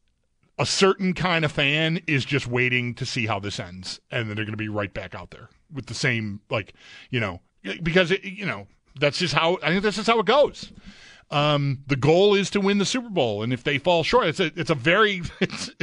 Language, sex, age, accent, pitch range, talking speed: English, male, 40-59, American, 125-175 Hz, 245 wpm